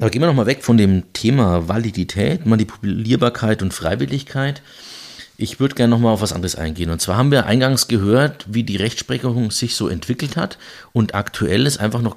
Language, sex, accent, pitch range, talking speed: German, male, German, 90-115 Hz, 185 wpm